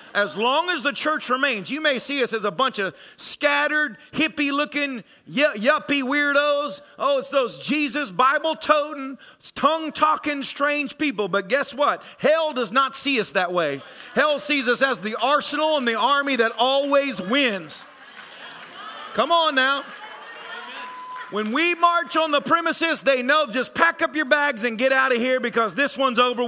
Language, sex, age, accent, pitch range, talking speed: English, male, 40-59, American, 220-290 Hz, 165 wpm